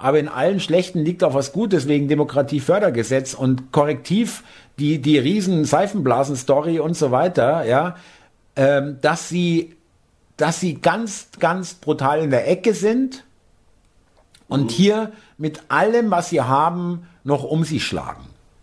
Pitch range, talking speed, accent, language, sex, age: 140-190 Hz, 130 wpm, German, German, male, 50-69